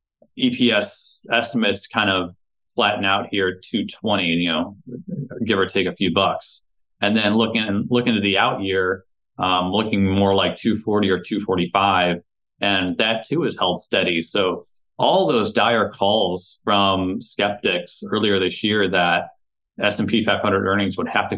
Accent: American